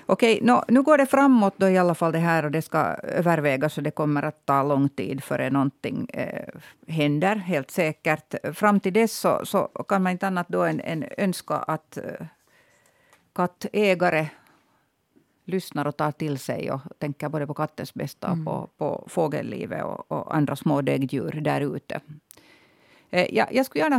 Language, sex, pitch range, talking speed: Swedish, female, 145-190 Hz, 165 wpm